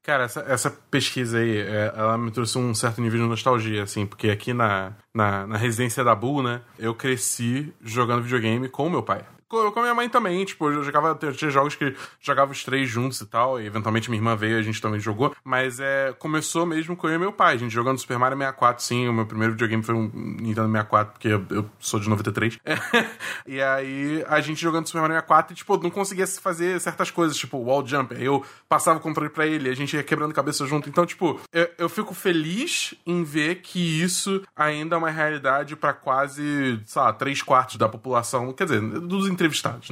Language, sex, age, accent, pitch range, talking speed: Portuguese, male, 20-39, Brazilian, 120-165 Hz, 215 wpm